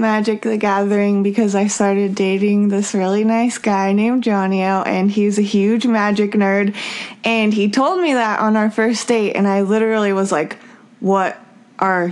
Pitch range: 195-230 Hz